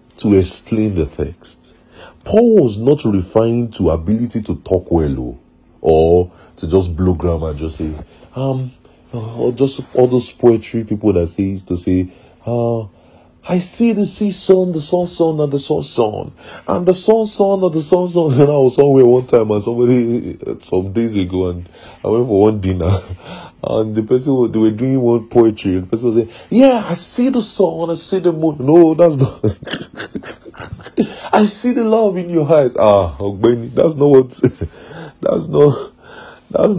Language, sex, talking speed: English, male, 180 wpm